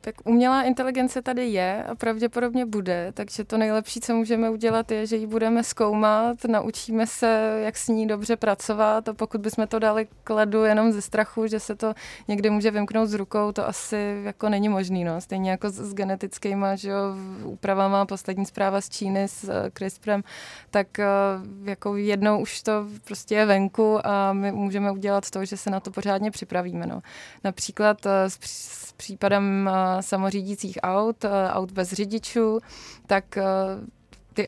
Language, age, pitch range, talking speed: Czech, 20-39, 195-215 Hz, 165 wpm